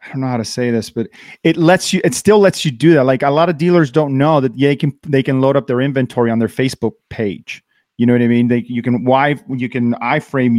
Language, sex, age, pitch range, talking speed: English, male, 30-49, 120-145 Hz, 280 wpm